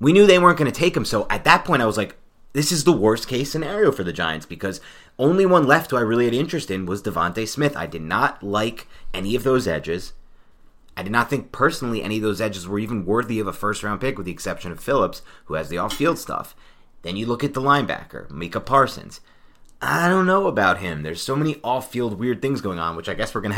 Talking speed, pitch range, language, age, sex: 250 wpm, 90-130 Hz, English, 30-49, male